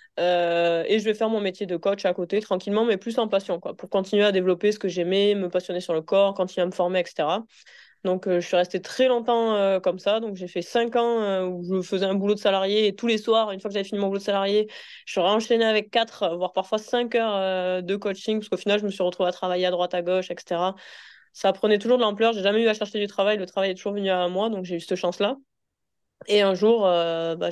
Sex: female